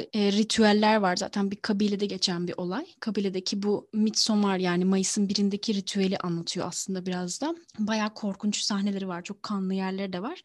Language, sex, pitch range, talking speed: Turkish, female, 195-245 Hz, 165 wpm